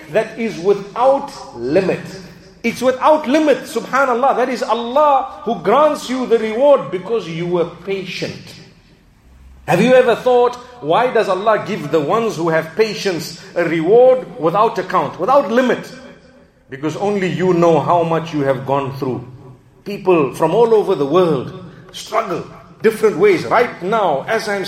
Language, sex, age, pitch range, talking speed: English, male, 50-69, 170-230 Hz, 150 wpm